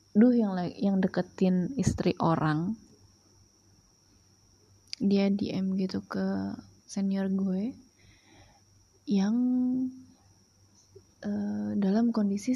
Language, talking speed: Indonesian, 80 wpm